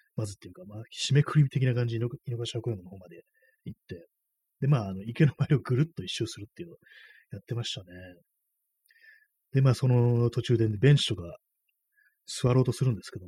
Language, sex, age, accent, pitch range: Japanese, male, 30-49, native, 100-145 Hz